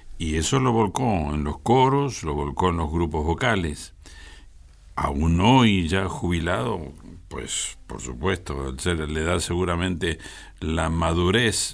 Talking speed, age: 130 wpm, 60-79